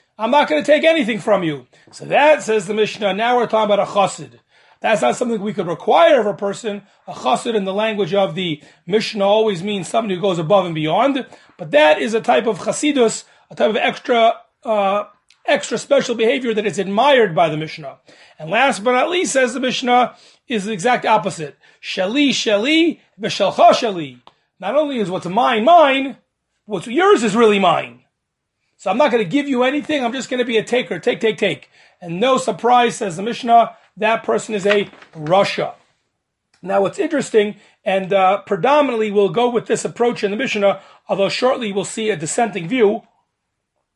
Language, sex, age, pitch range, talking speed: English, male, 30-49, 200-255 Hz, 190 wpm